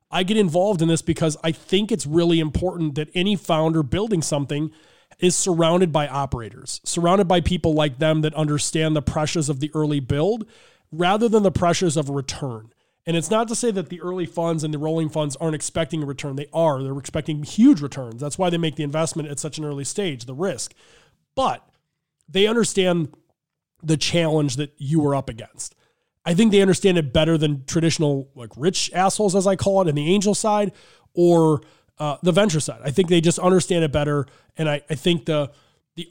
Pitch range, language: 145-175 Hz, English